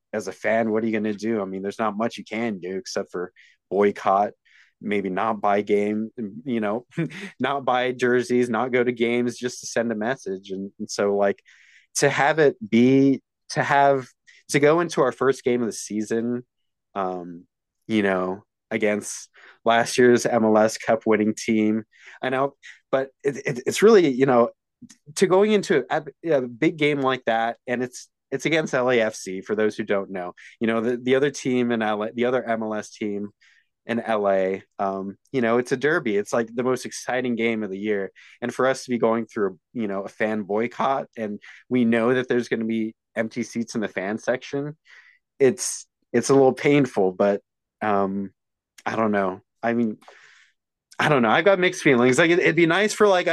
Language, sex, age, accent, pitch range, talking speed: English, male, 20-39, American, 105-130 Hz, 195 wpm